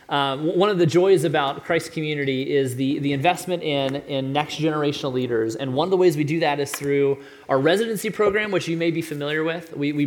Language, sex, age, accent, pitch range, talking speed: English, male, 30-49, American, 140-170 Hz, 225 wpm